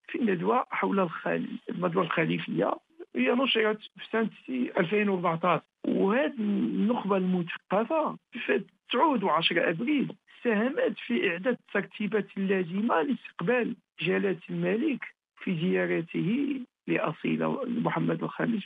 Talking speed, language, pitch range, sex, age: 90 wpm, Arabic, 175-245 Hz, male, 50-69